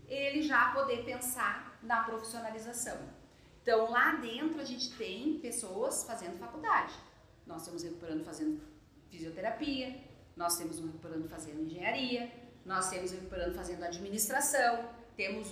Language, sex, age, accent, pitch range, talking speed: Portuguese, female, 40-59, Brazilian, 185-245 Hz, 130 wpm